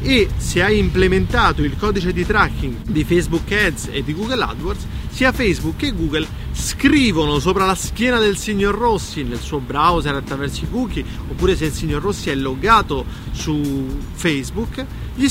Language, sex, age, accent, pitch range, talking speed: Italian, male, 30-49, native, 160-220 Hz, 165 wpm